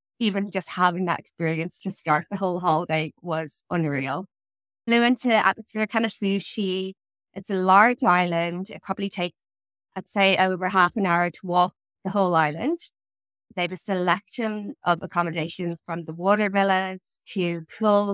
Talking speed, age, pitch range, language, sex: 160 wpm, 20-39, 165-200 Hz, English, female